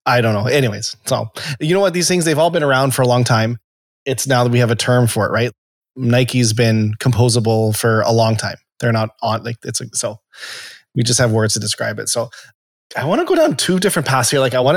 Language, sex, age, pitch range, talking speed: English, male, 20-39, 115-135 Hz, 250 wpm